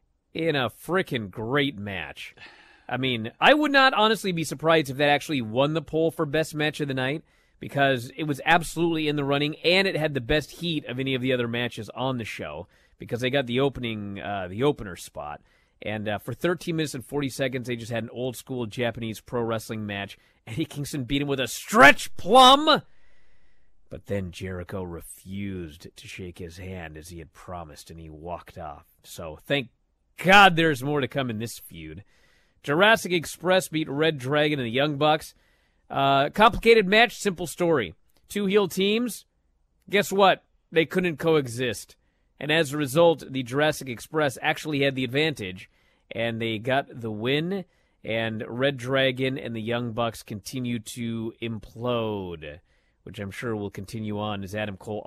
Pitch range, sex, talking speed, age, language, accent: 105-155 Hz, male, 180 wpm, 30-49, English, American